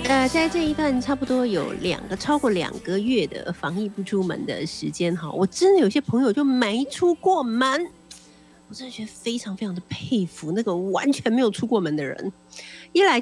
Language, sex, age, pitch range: Chinese, female, 50-69, 170-280 Hz